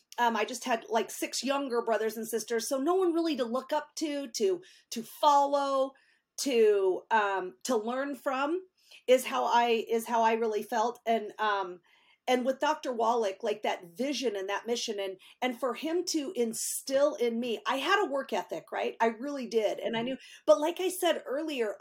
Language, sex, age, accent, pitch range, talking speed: English, female, 40-59, American, 220-280 Hz, 195 wpm